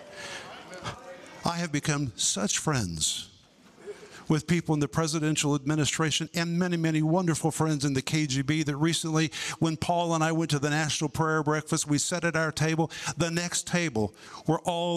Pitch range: 135-160 Hz